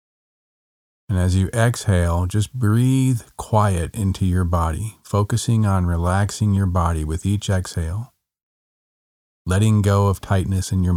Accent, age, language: American, 40-59, English